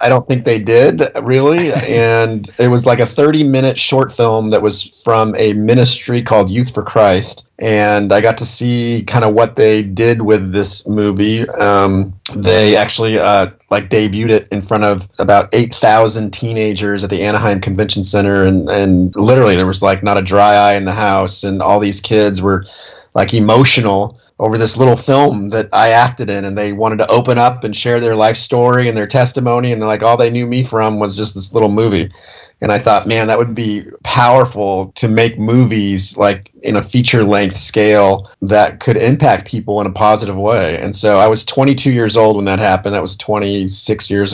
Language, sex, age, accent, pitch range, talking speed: English, male, 30-49, American, 100-115 Hz, 200 wpm